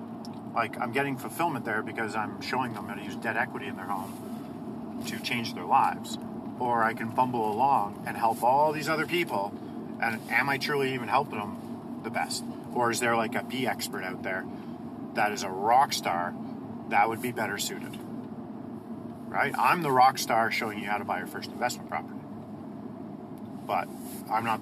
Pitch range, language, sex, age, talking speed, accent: 115-135 Hz, English, male, 40-59, 185 wpm, American